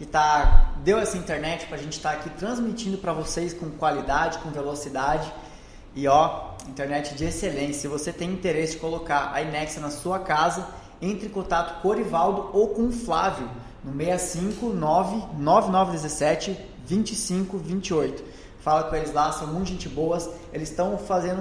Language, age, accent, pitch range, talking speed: Portuguese, 20-39, Brazilian, 150-185 Hz, 160 wpm